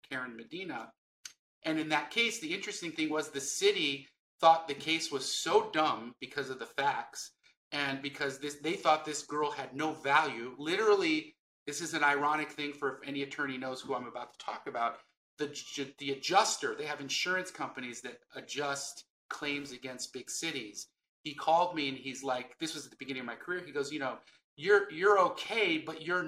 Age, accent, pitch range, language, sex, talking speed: 30-49, American, 130-155 Hz, English, male, 195 wpm